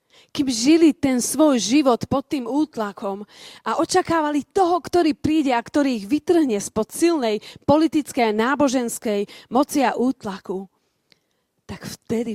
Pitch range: 205-290 Hz